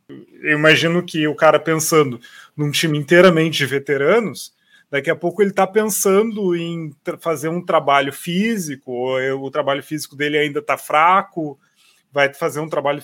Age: 30-49